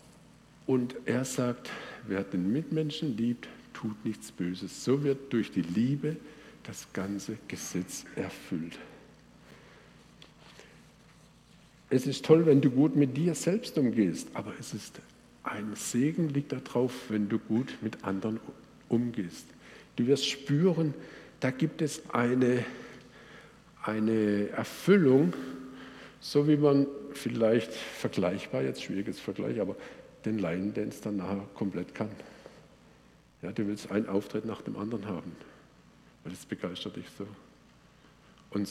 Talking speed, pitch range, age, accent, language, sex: 130 wpm, 105-140 Hz, 60-79, German, German, male